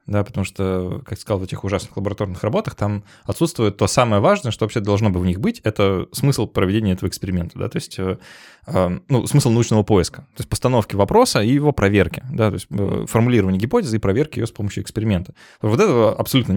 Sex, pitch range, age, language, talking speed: male, 100-125 Hz, 20-39, Russian, 210 wpm